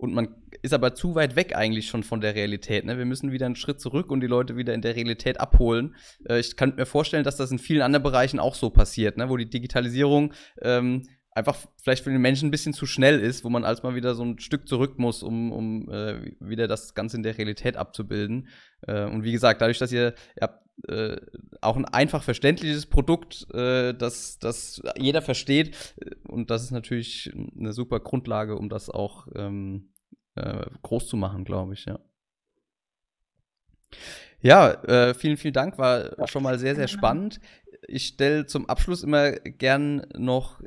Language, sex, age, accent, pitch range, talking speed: German, male, 20-39, German, 115-140 Hz, 195 wpm